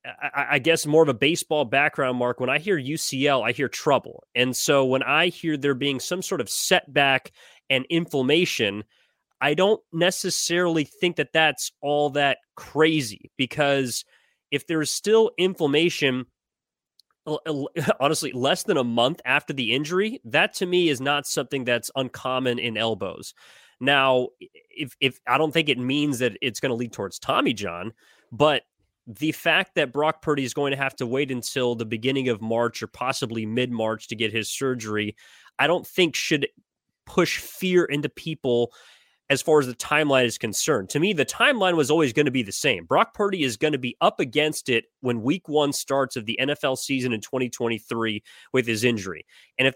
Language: English